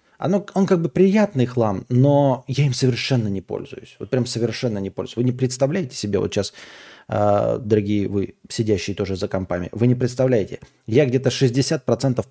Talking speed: 170 wpm